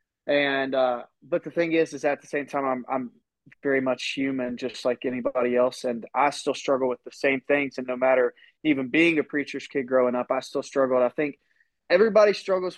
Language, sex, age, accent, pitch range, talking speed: English, male, 20-39, American, 125-150 Hz, 210 wpm